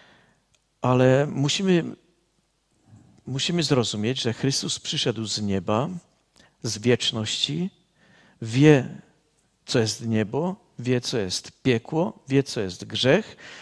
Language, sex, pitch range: Czech, male, 120-160 Hz